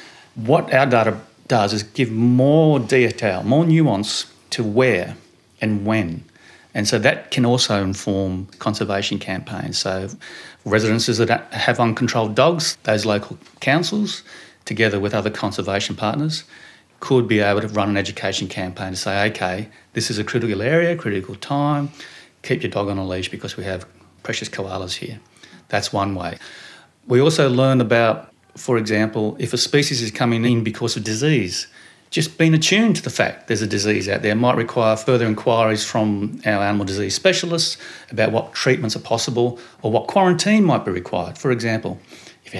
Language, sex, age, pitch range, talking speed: English, male, 40-59, 100-125 Hz, 170 wpm